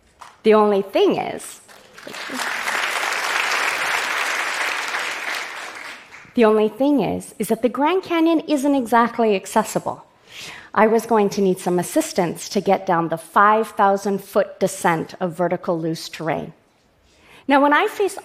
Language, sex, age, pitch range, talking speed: Russian, female, 40-59, 190-240 Hz, 120 wpm